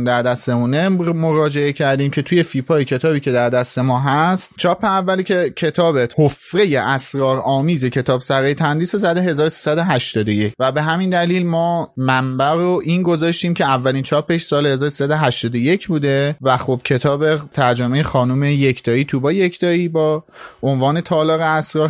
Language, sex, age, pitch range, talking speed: Persian, male, 30-49, 135-175 Hz, 150 wpm